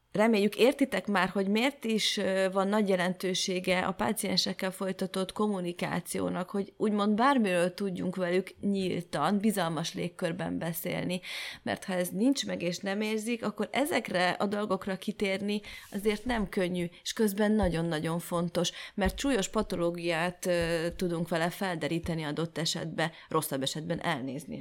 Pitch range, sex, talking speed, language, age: 170-210 Hz, female, 130 wpm, Hungarian, 30-49